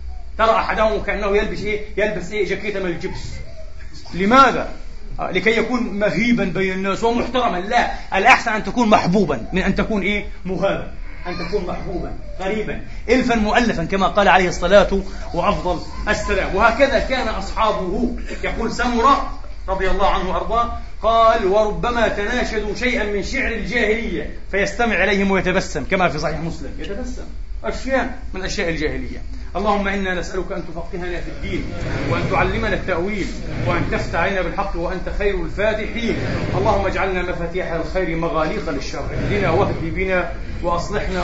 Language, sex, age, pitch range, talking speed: Arabic, male, 30-49, 170-210 Hz, 135 wpm